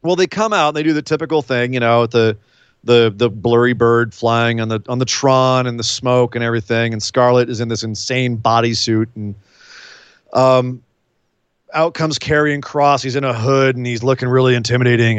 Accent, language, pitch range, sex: American, English, 115-155 Hz, male